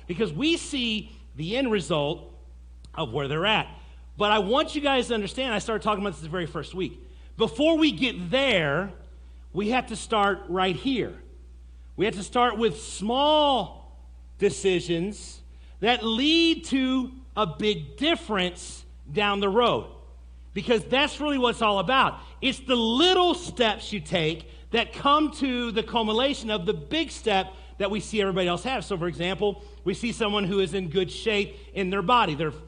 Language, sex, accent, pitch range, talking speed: English, male, American, 185-250 Hz, 175 wpm